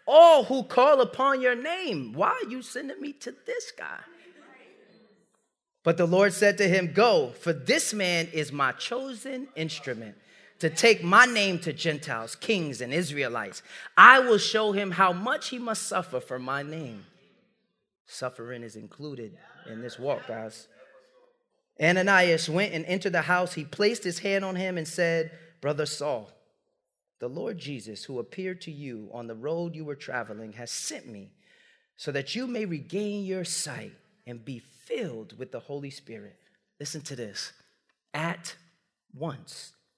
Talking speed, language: 160 wpm, English